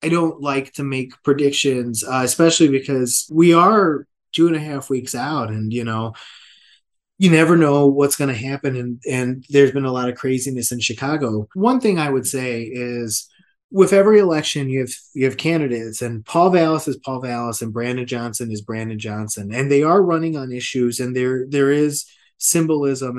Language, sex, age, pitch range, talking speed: English, male, 20-39, 125-145 Hz, 190 wpm